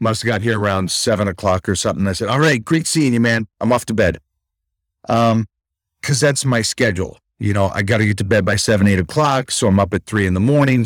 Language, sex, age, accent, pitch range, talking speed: English, male, 40-59, American, 100-145 Hz, 250 wpm